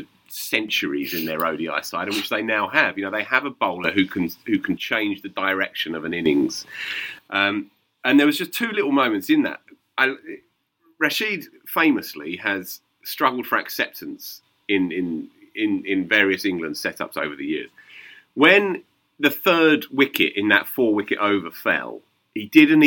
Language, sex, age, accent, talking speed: English, male, 30-49, British, 170 wpm